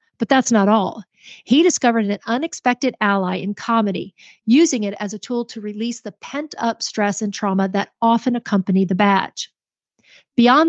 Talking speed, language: 165 wpm, English